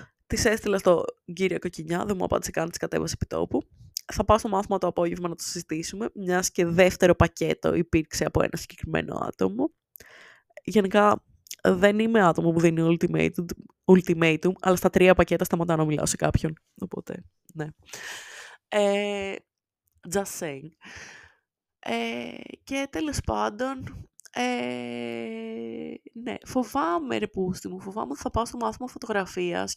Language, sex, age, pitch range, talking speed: Greek, female, 20-39, 160-230 Hz, 135 wpm